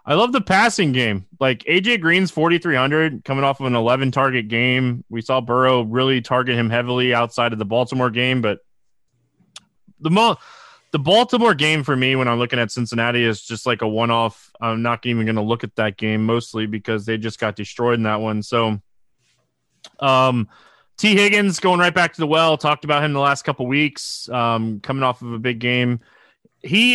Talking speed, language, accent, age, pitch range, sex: 195 wpm, English, American, 20-39, 120-165 Hz, male